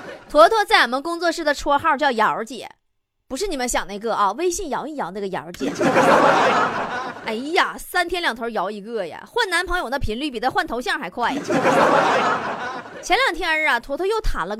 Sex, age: female, 20-39